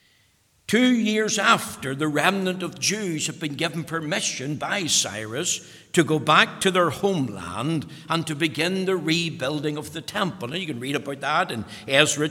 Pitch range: 150-190 Hz